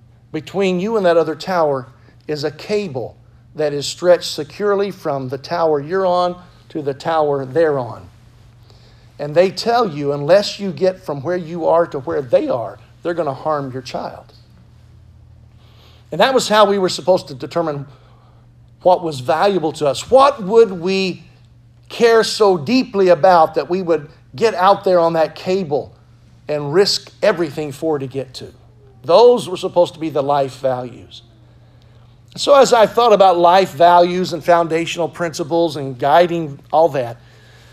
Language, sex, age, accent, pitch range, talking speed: English, male, 50-69, American, 120-180 Hz, 165 wpm